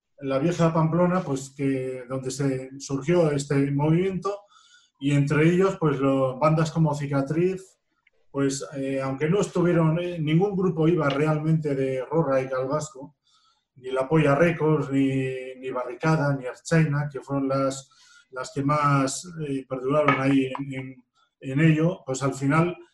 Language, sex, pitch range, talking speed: Spanish, male, 135-165 Hz, 150 wpm